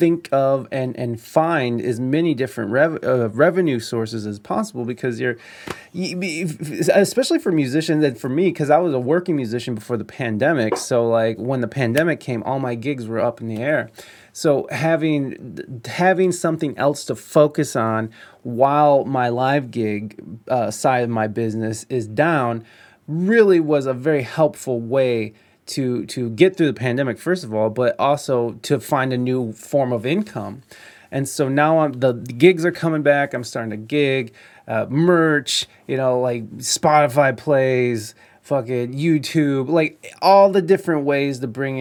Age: 30-49